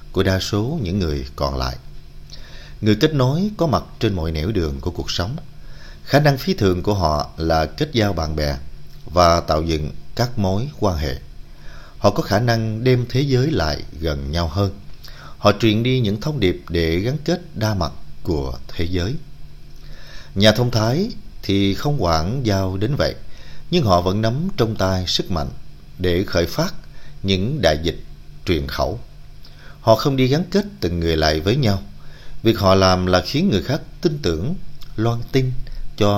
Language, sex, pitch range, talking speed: Vietnamese, male, 75-125 Hz, 180 wpm